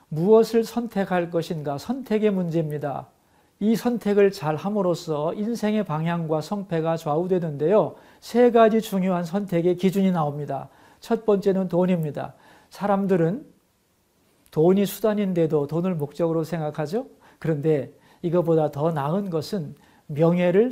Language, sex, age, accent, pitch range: Korean, male, 40-59, native, 160-215 Hz